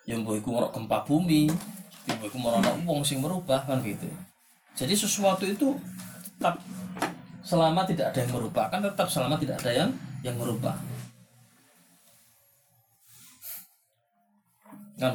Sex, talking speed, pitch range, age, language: male, 125 wpm, 130-190 Hz, 20-39, Malay